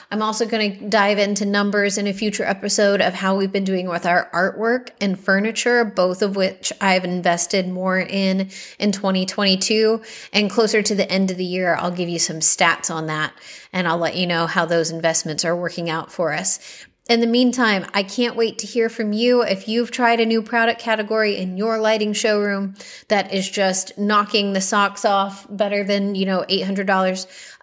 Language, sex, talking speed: English, female, 200 wpm